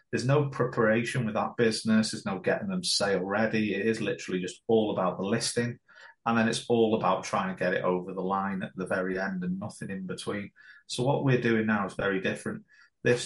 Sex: male